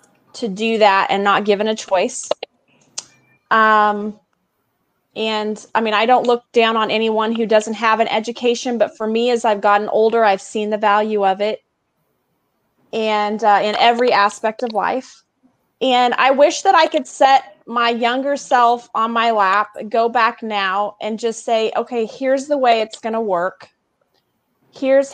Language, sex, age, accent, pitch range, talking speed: English, female, 30-49, American, 210-240 Hz, 170 wpm